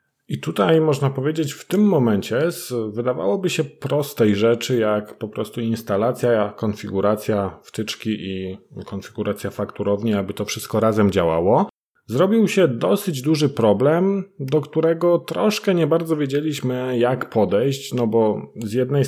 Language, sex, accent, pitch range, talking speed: Polish, male, native, 105-145 Hz, 130 wpm